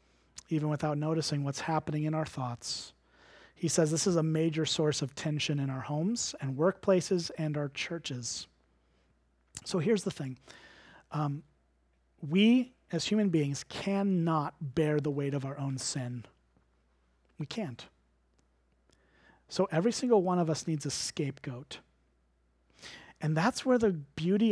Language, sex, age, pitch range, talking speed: English, male, 30-49, 125-185 Hz, 140 wpm